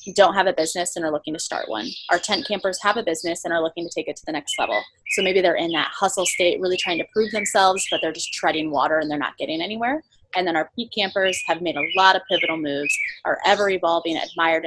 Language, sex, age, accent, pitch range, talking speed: English, female, 20-39, American, 175-225 Hz, 260 wpm